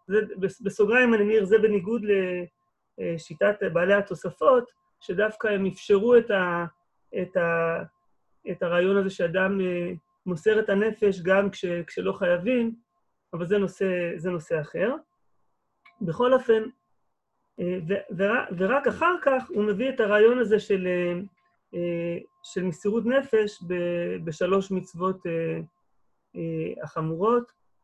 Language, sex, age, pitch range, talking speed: Hebrew, male, 30-49, 180-235 Hz, 105 wpm